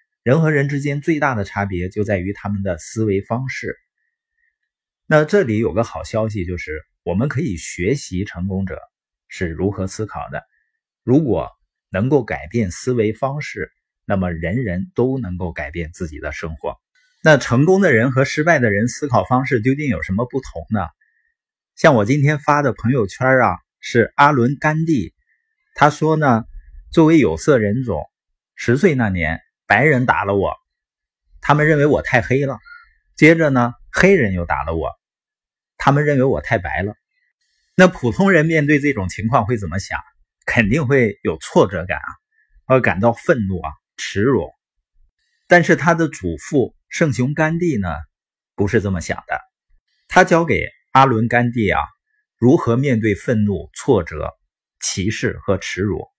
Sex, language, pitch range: male, Chinese, 100-155 Hz